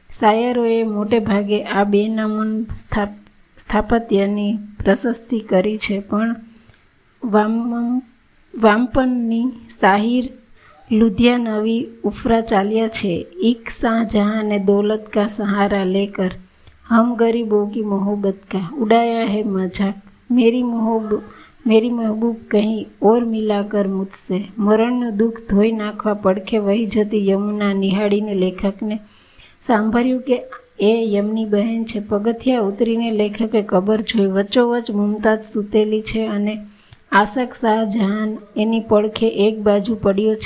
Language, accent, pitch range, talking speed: Gujarati, native, 205-230 Hz, 100 wpm